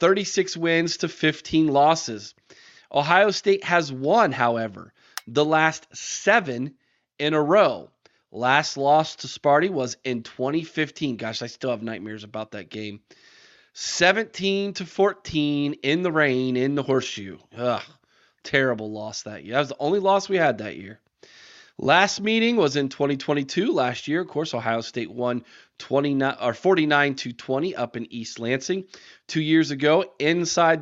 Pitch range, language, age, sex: 130-170 Hz, English, 30-49, male